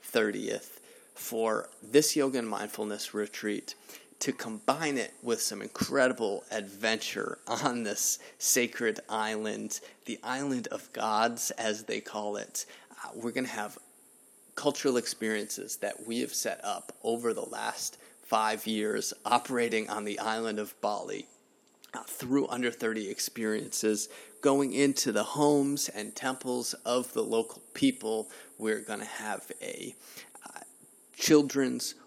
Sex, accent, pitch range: male, American, 110-140 Hz